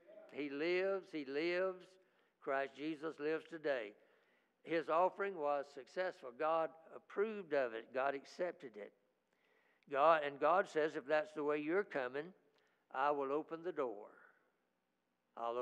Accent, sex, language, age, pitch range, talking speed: American, male, English, 60-79, 155-195 Hz, 135 wpm